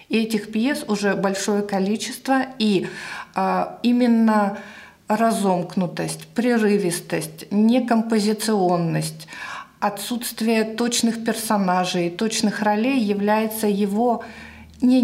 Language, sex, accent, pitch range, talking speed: Russian, female, native, 190-225 Hz, 75 wpm